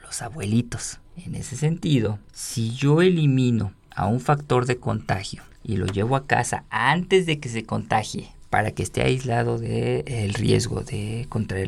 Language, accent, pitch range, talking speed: Spanish, Mexican, 110-145 Hz, 165 wpm